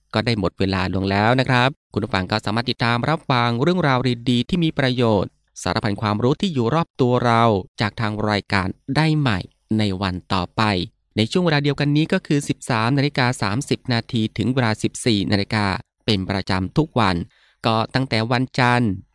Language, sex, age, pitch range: Thai, male, 20-39, 100-135 Hz